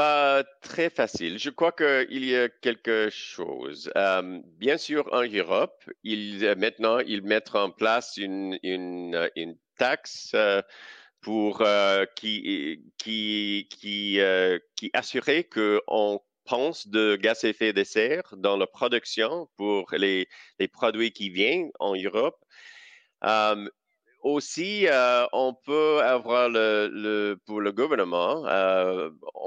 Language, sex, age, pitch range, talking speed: French, male, 50-69, 95-150 Hz, 135 wpm